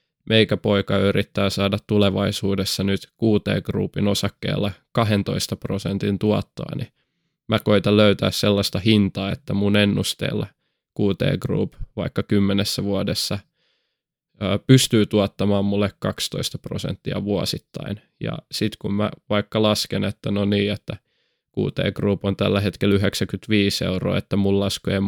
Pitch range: 100-110 Hz